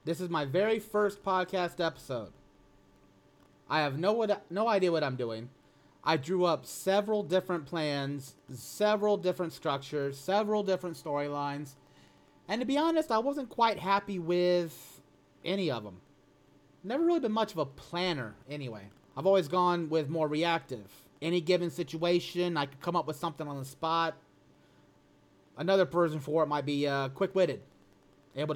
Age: 30-49